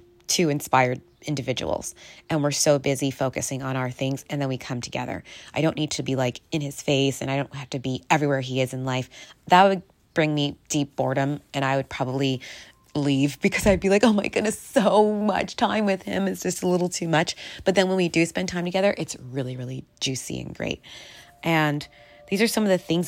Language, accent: English, American